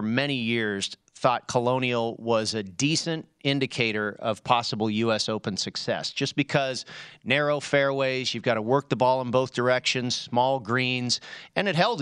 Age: 40-59